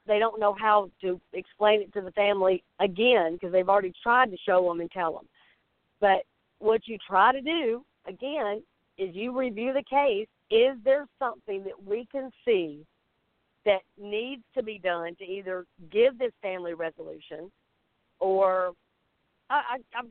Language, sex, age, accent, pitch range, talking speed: English, female, 50-69, American, 195-245 Hz, 165 wpm